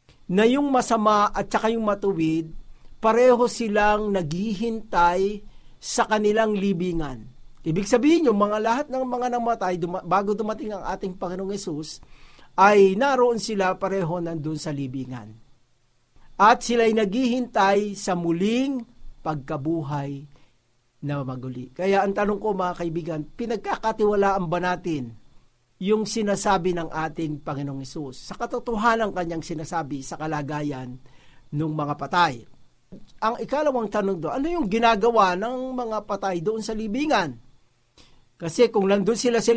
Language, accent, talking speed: Filipino, native, 130 wpm